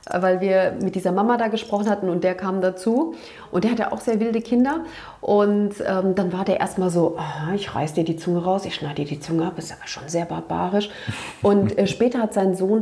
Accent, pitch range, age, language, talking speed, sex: German, 185-220 Hz, 40-59, German, 235 wpm, female